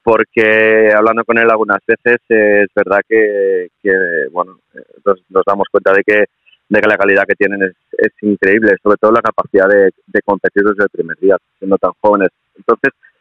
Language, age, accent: Spanish, 30-49, Spanish